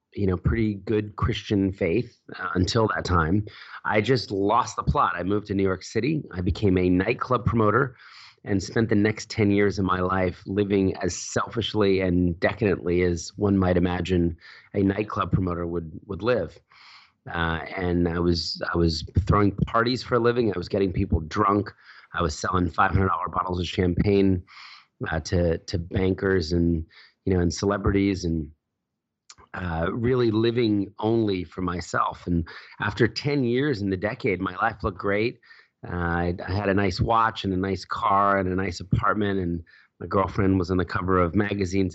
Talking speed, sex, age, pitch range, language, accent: 180 wpm, male, 30-49, 90-105 Hz, English, American